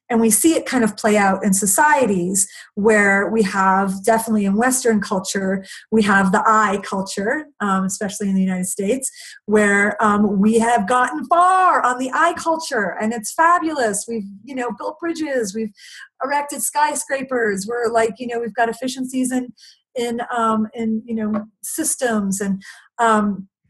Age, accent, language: 30-49, American, English